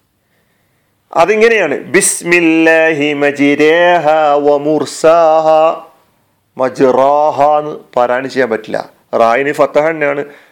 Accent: native